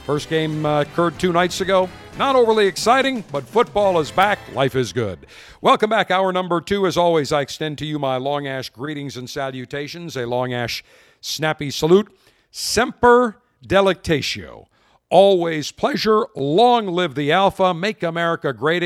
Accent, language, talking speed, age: American, English, 160 wpm, 50-69